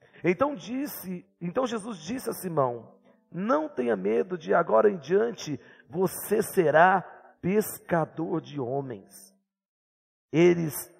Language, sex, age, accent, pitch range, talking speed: Portuguese, male, 50-69, Brazilian, 125-215 Hz, 110 wpm